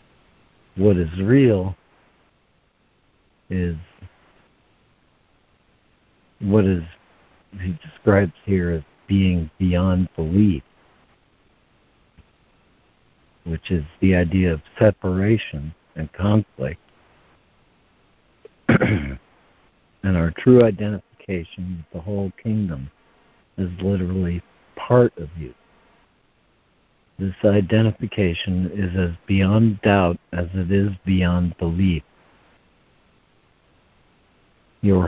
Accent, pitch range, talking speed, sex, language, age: American, 85-100 Hz, 80 wpm, male, English, 60-79